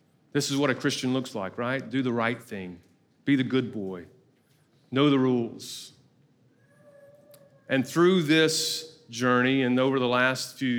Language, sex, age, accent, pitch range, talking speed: English, male, 40-59, American, 125-155 Hz, 155 wpm